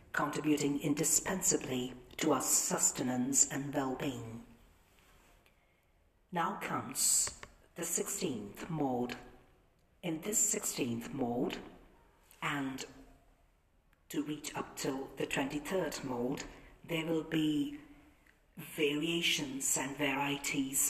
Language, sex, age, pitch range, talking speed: English, female, 50-69, 135-160 Hz, 85 wpm